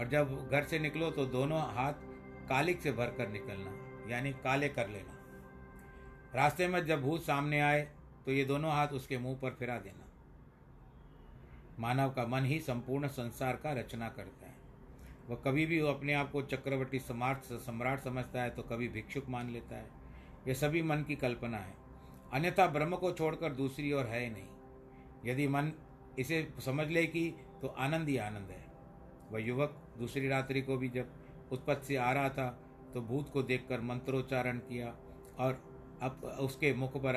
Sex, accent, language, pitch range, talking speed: male, native, Hindi, 120-140 Hz, 175 wpm